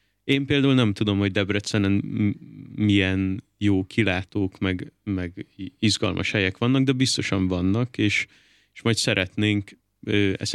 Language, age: Hungarian, 30-49